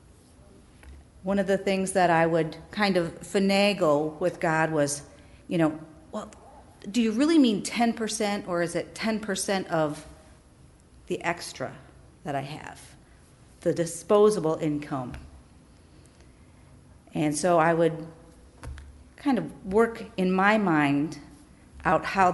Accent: American